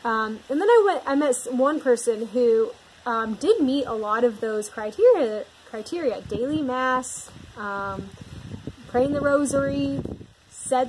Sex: female